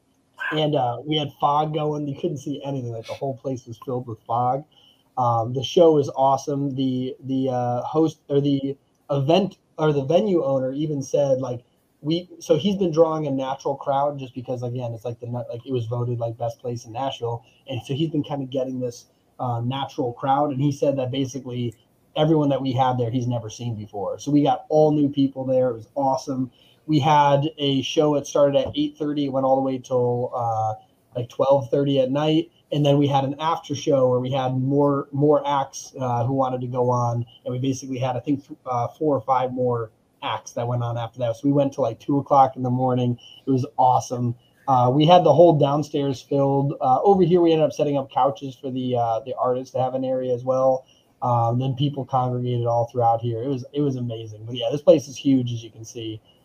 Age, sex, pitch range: 20-39, male, 125-145 Hz